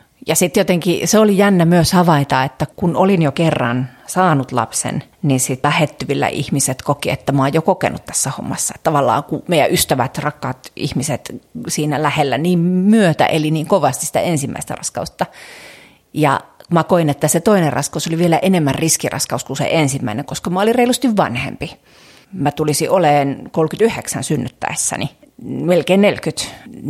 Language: Finnish